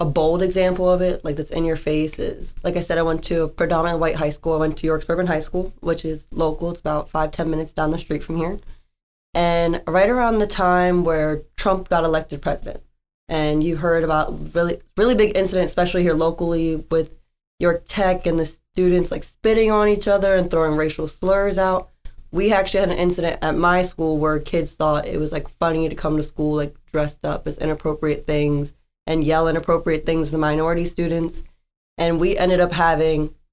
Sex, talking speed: female, 210 wpm